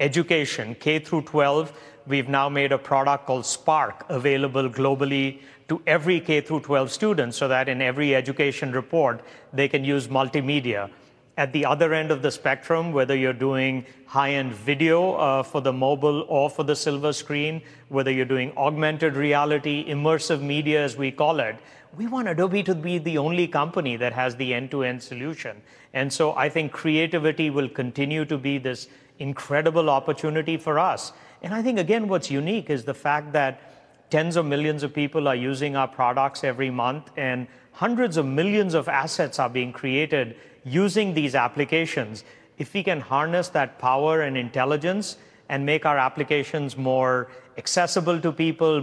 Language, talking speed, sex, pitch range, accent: English, 170 wpm, male, 135-160 Hz, Indian